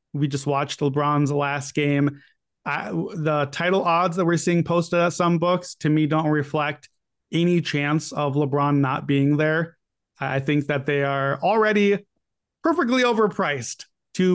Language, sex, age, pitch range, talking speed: English, male, 30-49, 140-170 Hz, 150 wpm